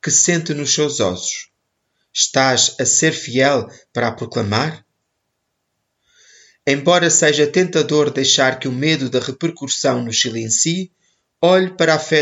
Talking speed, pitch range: 135 wpm, 125-155 Hz